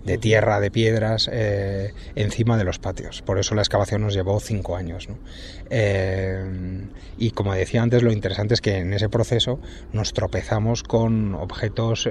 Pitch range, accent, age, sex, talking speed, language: 100-115 Hz, Spanish, 30-49, male, 165 wpm, Spanish